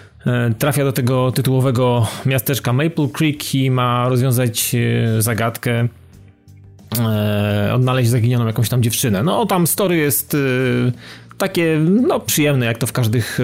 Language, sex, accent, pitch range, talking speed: Polish, male, native, 115-140 Hz, 115 wpm